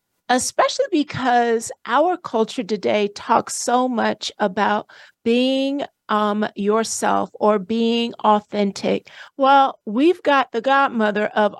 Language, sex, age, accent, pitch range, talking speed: English, female, 50-69, American, 215-270 Hz, 110 wpm